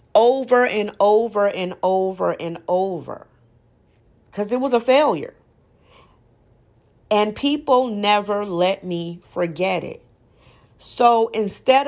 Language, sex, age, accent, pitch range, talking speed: English, female, 40-59, American, 170-245 Hz, 105 wpm